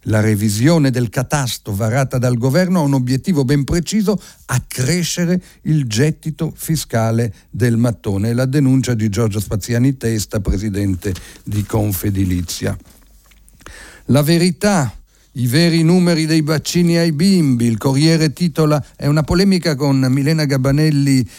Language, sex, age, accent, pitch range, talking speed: Italian, male, 50-69, native, 110-140 Hz, 125 wpm